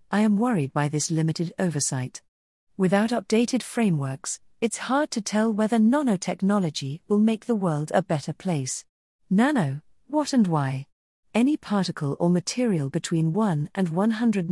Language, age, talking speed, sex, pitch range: English, 40-59, 145 wpm, female, 150-215 Hz